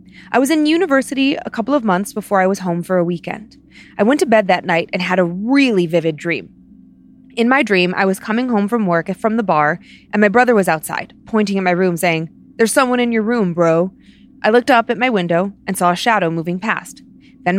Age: 20-39